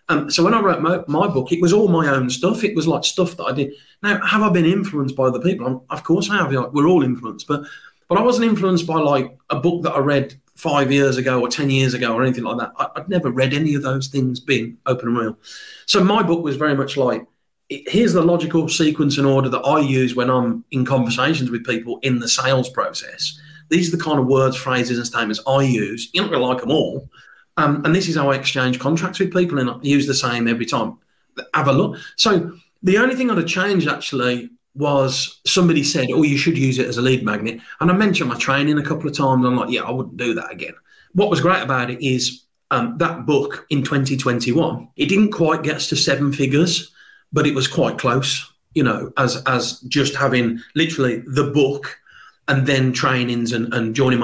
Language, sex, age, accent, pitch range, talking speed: English, male, 40-59, British, 130-165 Hz, 235 wpm